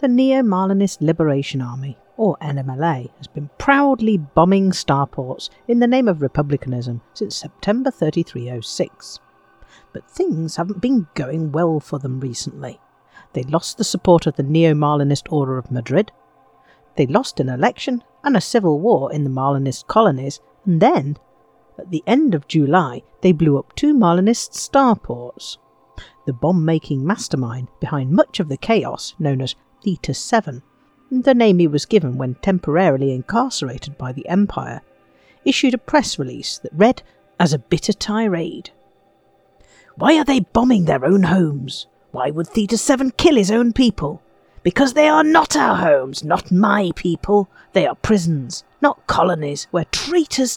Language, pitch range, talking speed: English, 145-230 Hz, 150 wpm